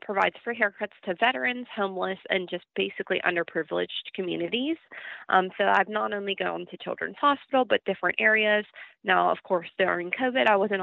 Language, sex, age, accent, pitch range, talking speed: English, female, 20-39, American, 180-225 Hz, 165 wpm